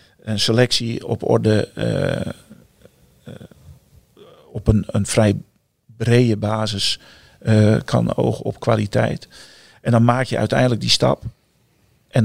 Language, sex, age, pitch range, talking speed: Dutch, male, 50-69, 105-120 Hz, 125 wpm